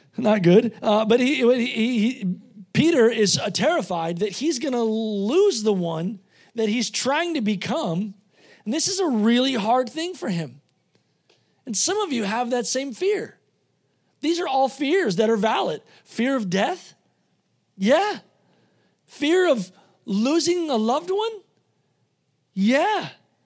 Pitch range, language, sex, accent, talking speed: 205-275 Hz, English, male, American, 150 wpm